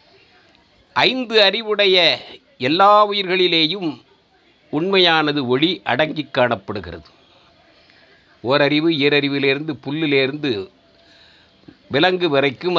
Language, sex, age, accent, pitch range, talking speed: Tamil, male, 50-69, native, 125-170 Hz, 60 wpm